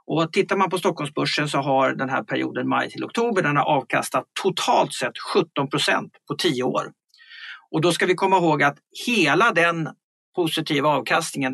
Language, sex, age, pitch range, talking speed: Swedish, male, 50-69, 145-215 Hz, 165 wpm